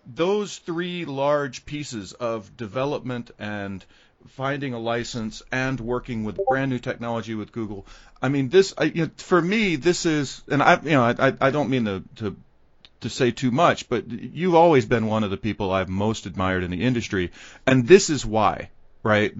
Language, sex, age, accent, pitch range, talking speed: English, male, 40-59, American, 110-140 Hz, 190 wpm